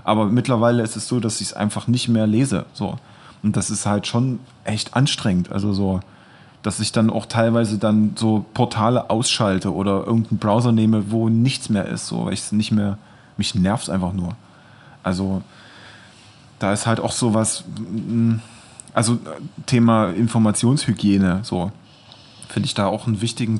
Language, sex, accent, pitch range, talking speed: German, male, German, 105-115 Hz, 165 wpm